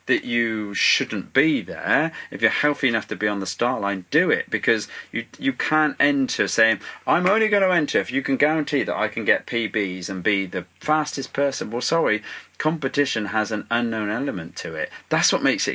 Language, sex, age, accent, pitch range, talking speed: English, male, 40-59, British, 95-135 Hz, 210 wpm